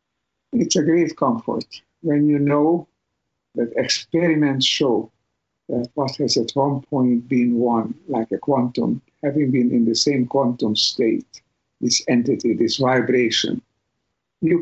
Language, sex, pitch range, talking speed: English, male, 120-145 Hz, 135 wpm